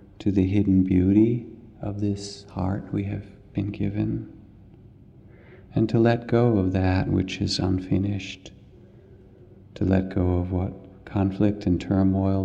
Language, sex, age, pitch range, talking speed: English, male, 50-69, 95-110 Hz, 135 wpm